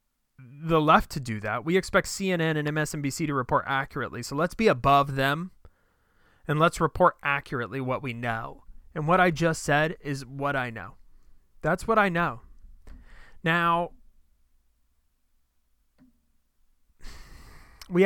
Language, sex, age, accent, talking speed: English, male, 30-49, American, 135 wpm